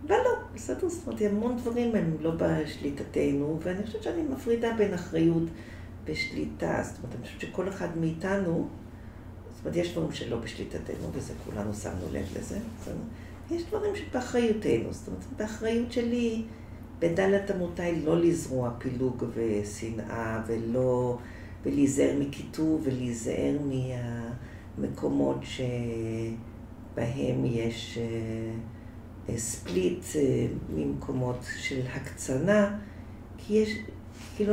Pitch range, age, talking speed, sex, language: 105-165 Hz, 40-59, 105 wpm, female, Hebrew